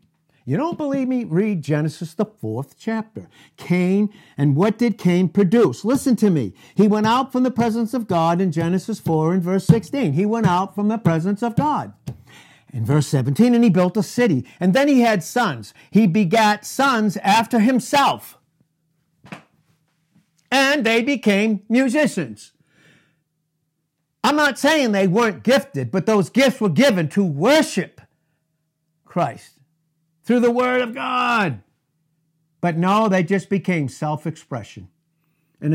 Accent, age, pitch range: American, 60-79, 155-225 Hz